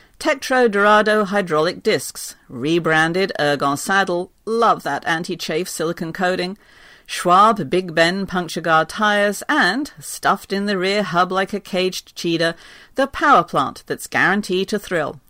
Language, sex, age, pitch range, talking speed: English, female, 50-69, 165-220 Hz, 135 wpm